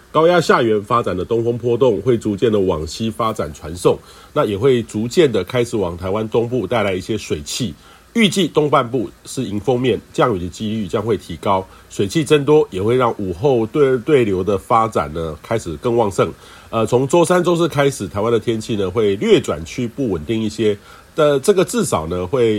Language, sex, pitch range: Chinese, male, 100-130 Hz